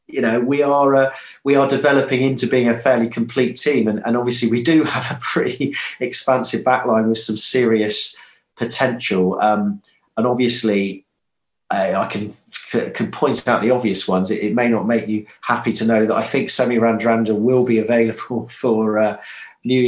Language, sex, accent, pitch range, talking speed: English, male, British, 105-130 Hz, 180 wpm